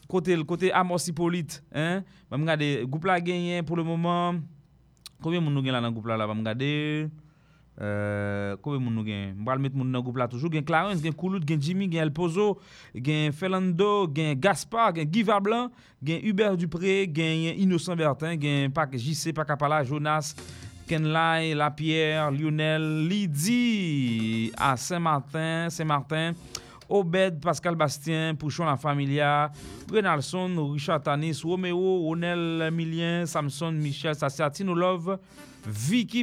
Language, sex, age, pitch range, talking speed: English, male, 30-49, 145-180 Hz, 140 wpm